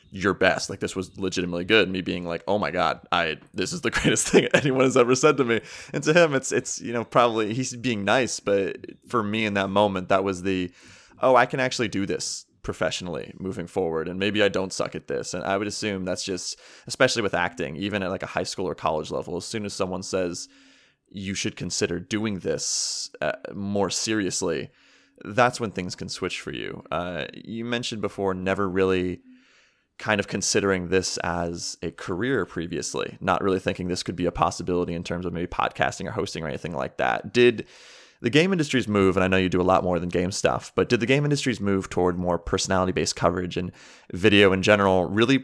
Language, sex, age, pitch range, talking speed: English, male, 20-39, 90-120 Hz, 215 wpm